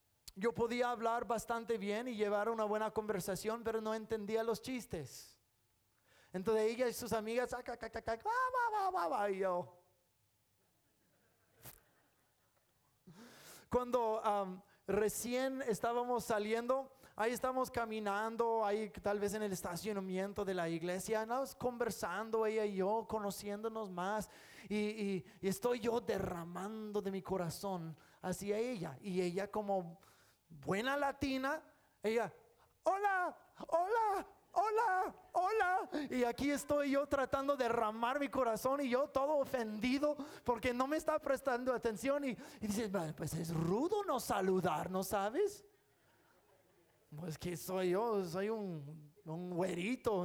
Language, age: English, 30-49